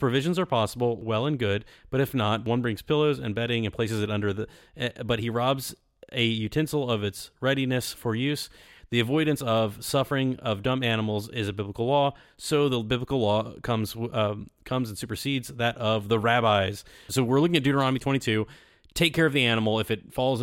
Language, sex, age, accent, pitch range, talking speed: English, male, 30-49, American, 105-135 Hz, 195 wpm